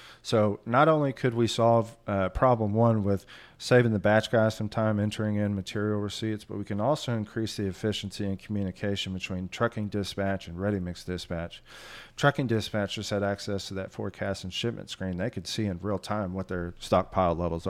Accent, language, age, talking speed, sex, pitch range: American, English, 40-59, 190 wpm, male, 100-115 Hz